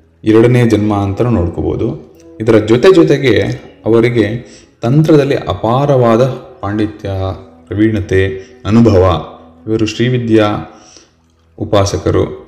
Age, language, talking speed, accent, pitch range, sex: 20-39, English, 95 wpm, Indian, 95-125 Hz, male